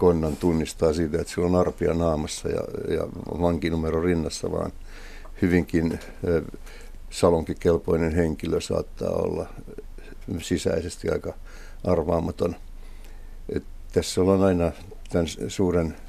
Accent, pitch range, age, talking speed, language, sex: native, 75-85 Hz, 60-79, 100 wpm, Finnish, male